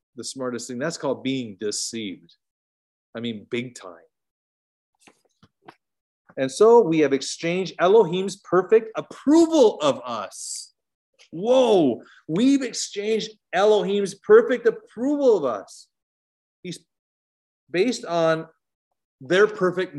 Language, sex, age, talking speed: English, male, 40-59, 100 wpm